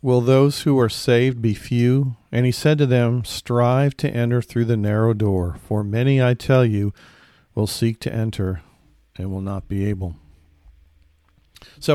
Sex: male